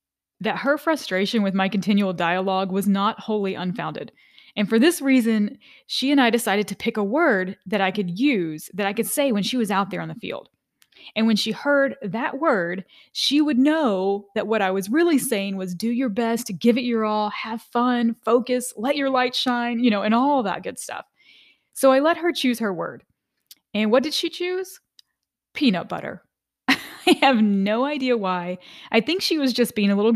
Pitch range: 195-255 Hz